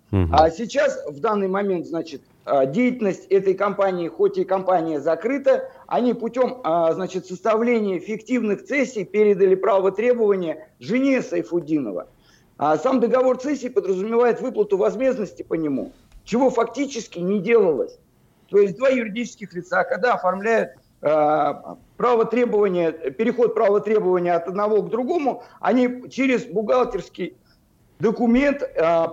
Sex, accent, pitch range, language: male, native, 190-250 Hz, Russian